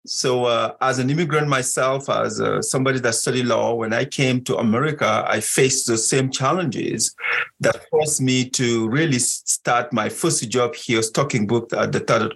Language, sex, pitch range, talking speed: English, male, 115-135 Hz, 180 wpm